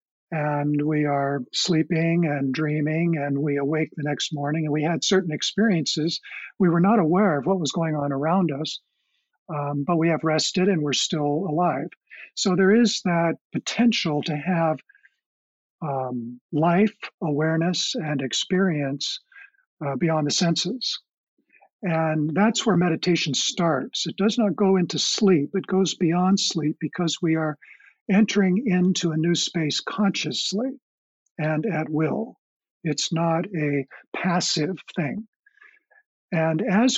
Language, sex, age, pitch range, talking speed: English, male, 50-69, 150-190 Hz, 140 wpm